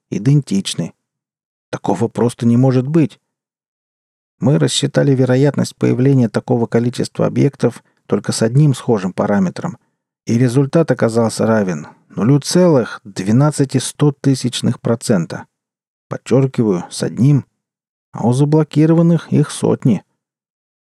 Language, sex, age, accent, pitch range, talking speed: Russian, male, 40-59, native, 110-145 Hz, 100 wpm